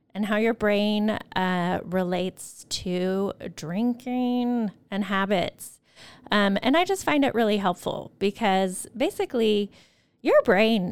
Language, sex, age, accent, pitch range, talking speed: English, female, 30-49, American, 190-240 Hz, 120 wpm